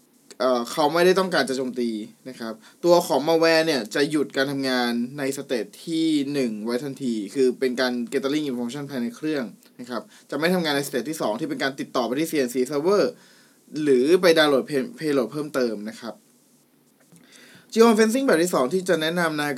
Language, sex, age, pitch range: Thai, male, 20-39, 130-175 Hz